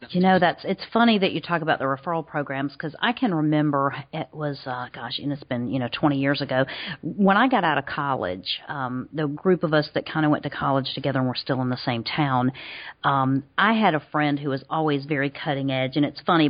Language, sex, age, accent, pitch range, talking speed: English, female, 40-59, American, 135-165 Hz, 245 wpm